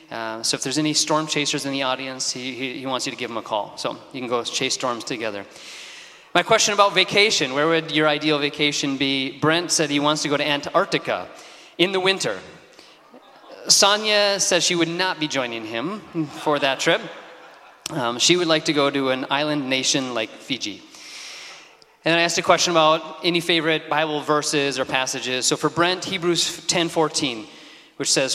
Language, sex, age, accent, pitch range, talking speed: English, male, 30-49, American, 135-160 Hz, 195 wpm